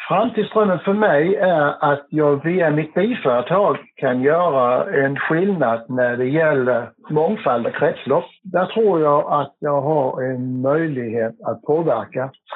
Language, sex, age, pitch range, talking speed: Swedish, male, 60-79, 125-160 Hz, 140 wpm